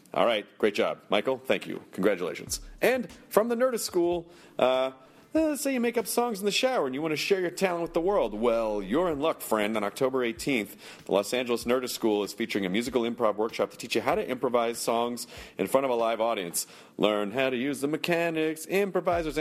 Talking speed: 225 wpm